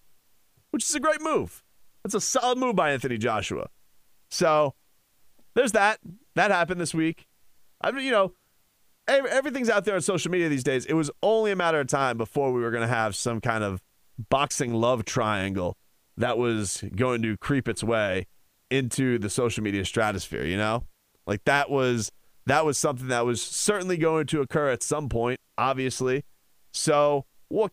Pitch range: 120-165 Hz